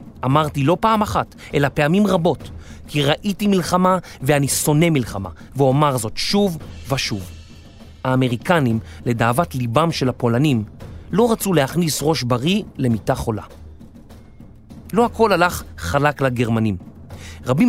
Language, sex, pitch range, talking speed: Hebrew, male, 115-175 Hz, 120 wpm